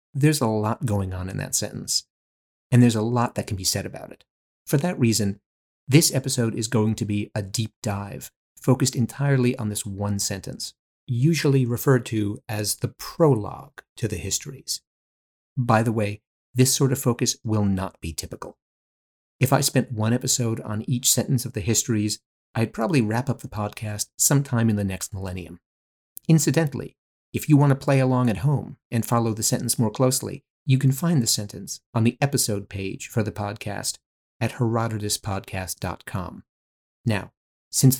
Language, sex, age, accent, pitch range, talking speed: English, male, 30-49, American, 105-130 Hz, 170 wpm